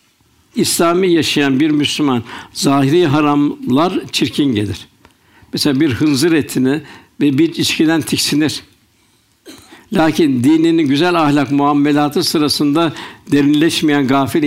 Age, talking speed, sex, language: 60-79, 100 wpm, male, Turkish